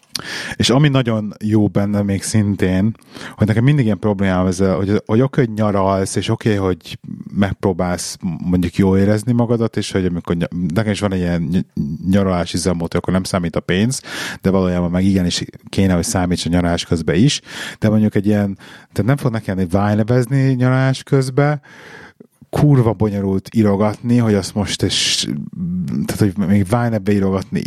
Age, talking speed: 30-49, 170 wpm